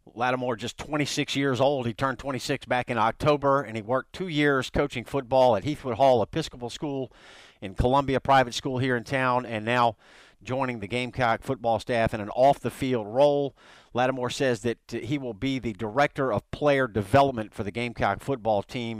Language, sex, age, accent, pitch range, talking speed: English, male, 50-69, American, 120-140 Hz, 180 wpm